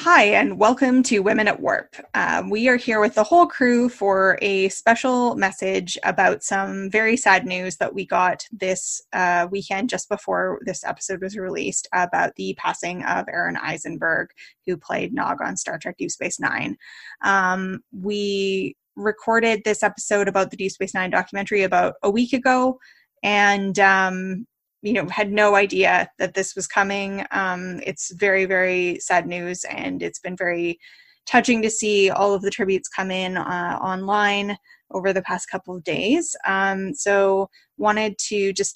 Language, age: English, 10-29